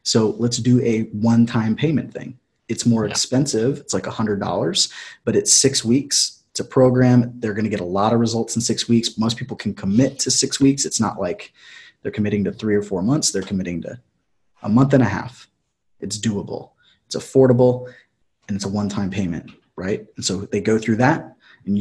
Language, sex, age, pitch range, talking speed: English, male, 20-39, 110-130 Hz, 200 wpm